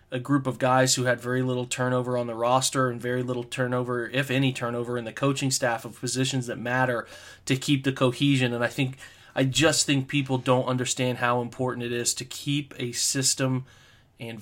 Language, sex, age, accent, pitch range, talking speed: English, male, 20-39, American, 120-135 Hz, 205 wpm